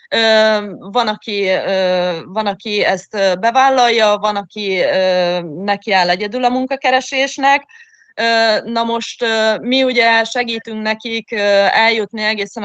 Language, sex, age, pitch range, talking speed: Hungarian, female, 20-39, 205-245 Hz, 95 wpm